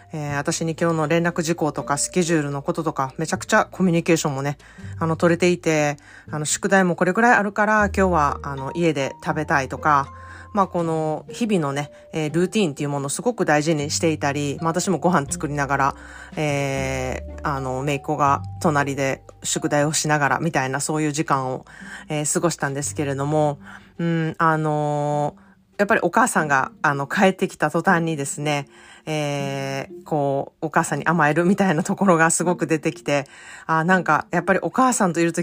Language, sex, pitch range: Japanese, female, 150-185 Hz